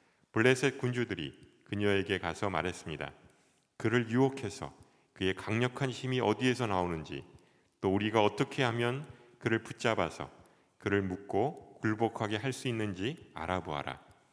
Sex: male